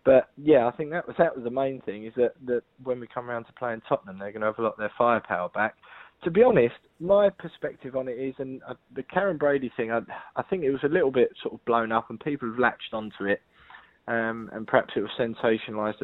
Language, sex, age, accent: English, male, 20-39, British